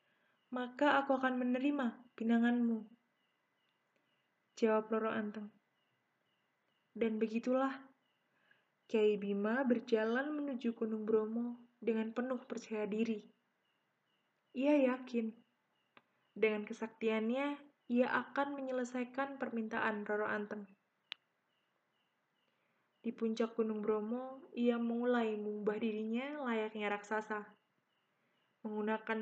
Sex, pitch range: female, 220-255 Hz